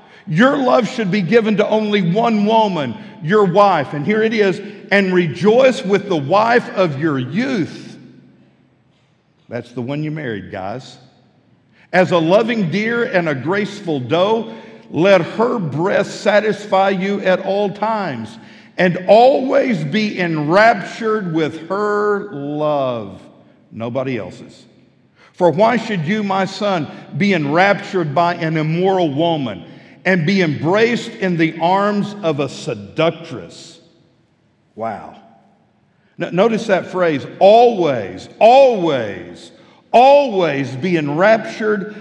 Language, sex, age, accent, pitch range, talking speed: English, male, 50-69, American, 165-210 Hz, 120 wpm